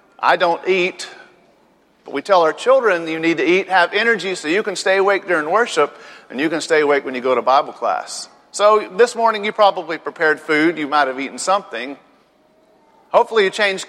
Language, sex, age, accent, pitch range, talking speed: English, male, 40-59, American, 145-190 Hz, 205 wpm